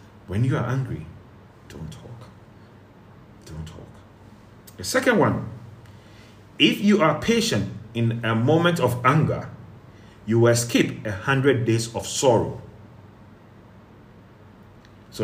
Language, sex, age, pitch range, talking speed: English, male, 30-49, 105-125 Hz, 115 wpm